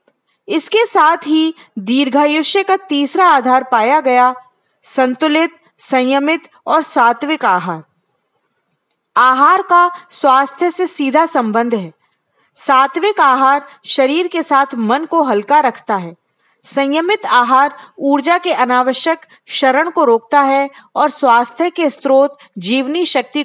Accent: native